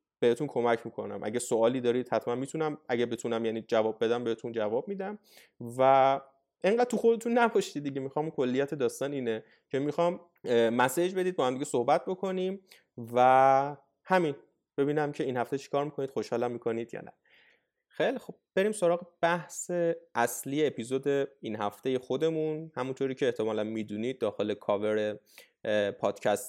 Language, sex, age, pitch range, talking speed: Persian, male, 20-39, 120-170 Hz, 145 wpm